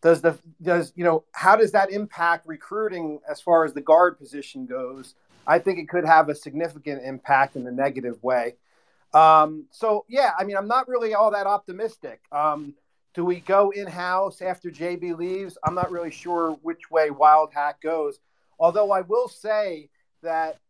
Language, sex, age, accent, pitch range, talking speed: English, male, 40-59, American, 150-190 Hz, 180 wpm